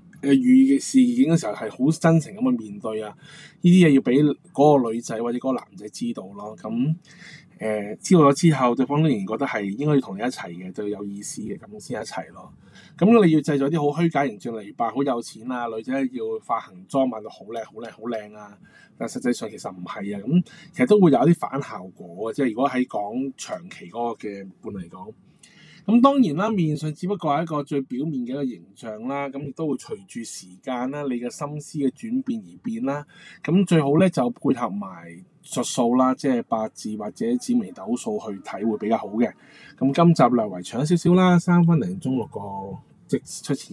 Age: 20-39